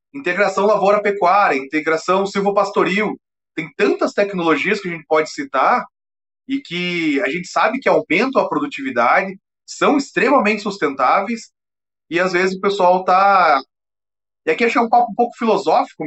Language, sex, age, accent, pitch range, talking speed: Portuguese, male, 30-49, Brazilian, 155-235 Hz, 140 wpm